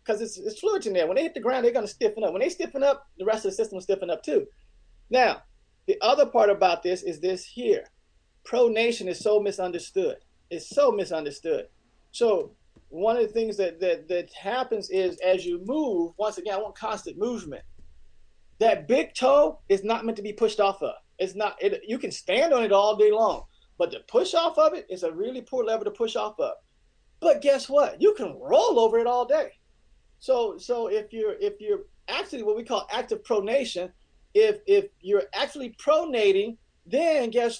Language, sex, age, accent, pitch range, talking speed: English, male, 30-49, American, 200-330 Hz, 200 wpm